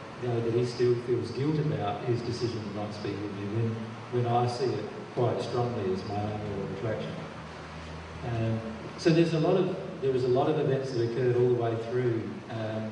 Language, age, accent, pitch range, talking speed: English, 40-59, Australian, 115-135 Hz, 185 wpm